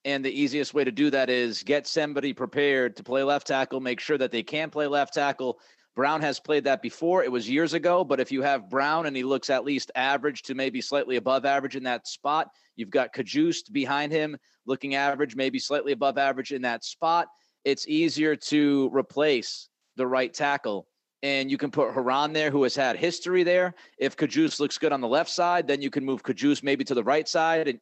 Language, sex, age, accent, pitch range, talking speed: English, male, 30-49, American, 130-150 Hz, 220 wpm